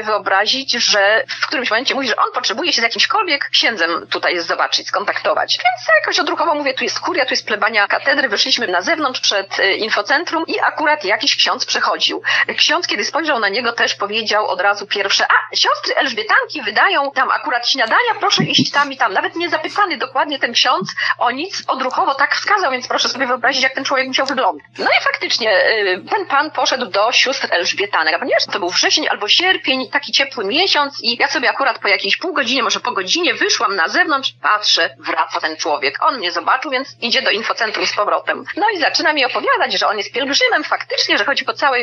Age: 30-49